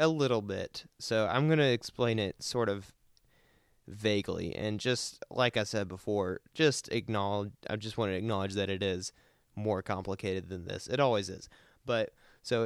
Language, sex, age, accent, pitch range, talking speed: English, male, 20-39, American, 100-115 Hz, 170 wpm